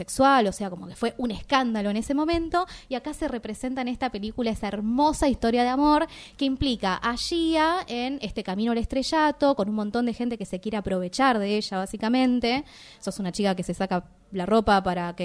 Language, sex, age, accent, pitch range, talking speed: Spanish, female, 20-39, Argentinian, 190-250 Hz, 210 wpm